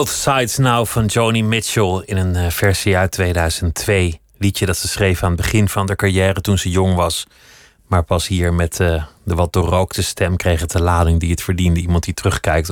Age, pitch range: 30-49, 85-100 Hz